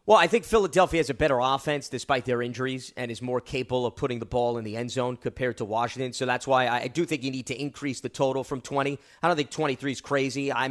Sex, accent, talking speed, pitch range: male, American, 265 wpm, 130-175 Hz